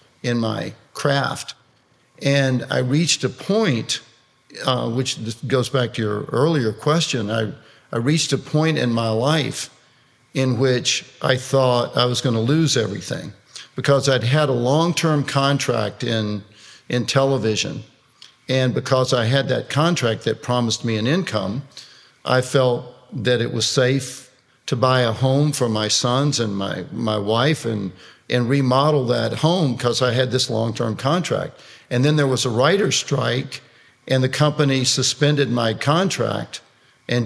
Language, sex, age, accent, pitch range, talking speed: English, male, 50-69, American, 120-140 Hz, 155 wpm